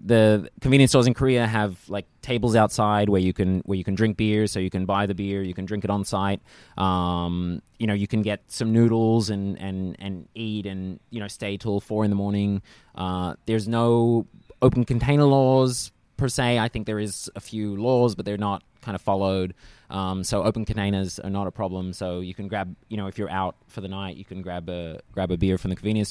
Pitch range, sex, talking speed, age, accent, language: 95-110 Hz, male, 230 wpm, 20-39, Australian, English